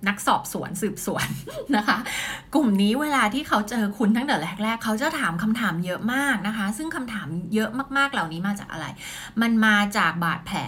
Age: 20-39